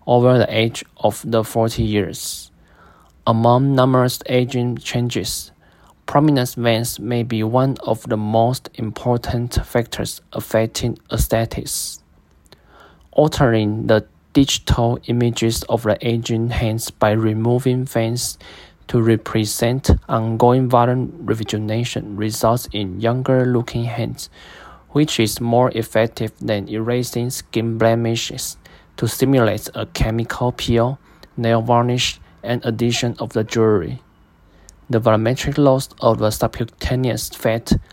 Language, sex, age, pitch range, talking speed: English, male, 20-39, 110-125 Hz, 110 wpm